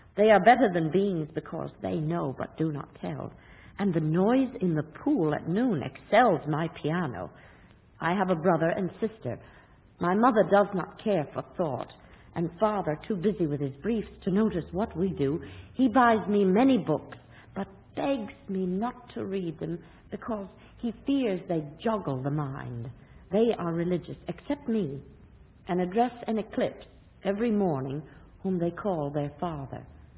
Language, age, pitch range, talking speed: English, 60-79, 145-205 Hz, 165 wpm